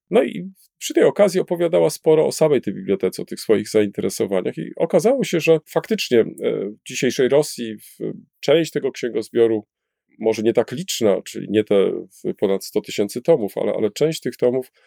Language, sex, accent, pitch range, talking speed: Polish, male, native, 110-180 Hz, 170 wpm